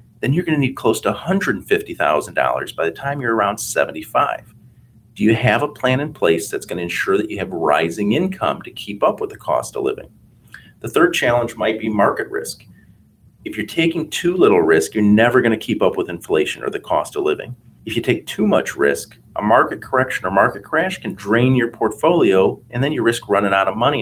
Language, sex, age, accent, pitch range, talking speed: English, male, 40-59, American, 110-160 Hz, 220 wpm